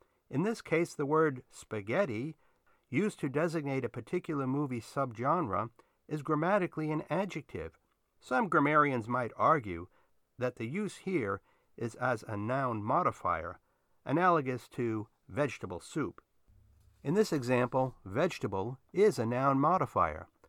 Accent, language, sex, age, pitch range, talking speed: American, English, male, 50-69, 110-160 Hz, 125 wpm